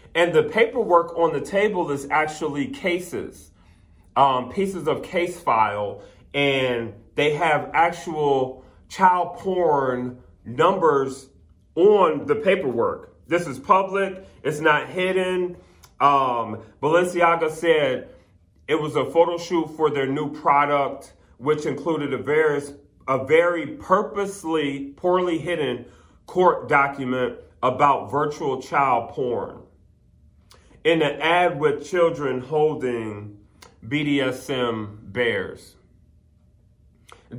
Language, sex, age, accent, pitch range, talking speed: English, male, 40-59, American, 120-165 Hz, 105 wpm